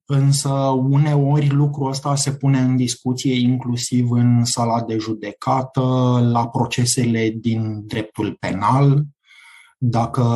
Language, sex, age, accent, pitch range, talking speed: Romanian, male, 20-39, native, 115-145 Hz, 110 wpm